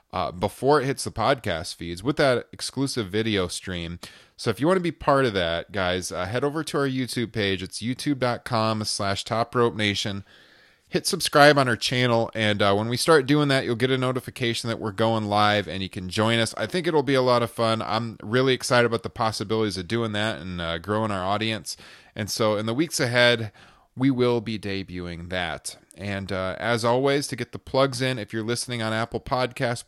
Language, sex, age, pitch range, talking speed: English, male, 30-49, 105-130 Hz, 215 wpm